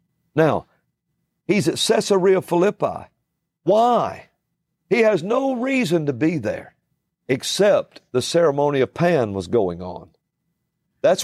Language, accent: English, American